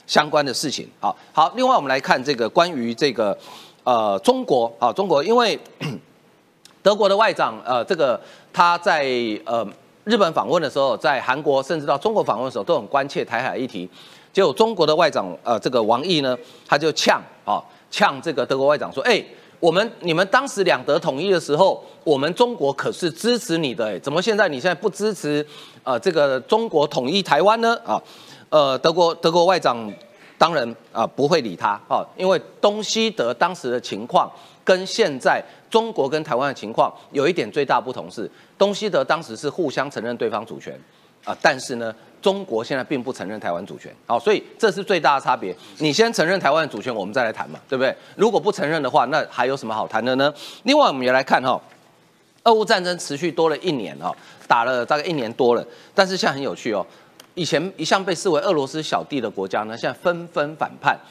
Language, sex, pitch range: Chinese, male, 135-205 Hz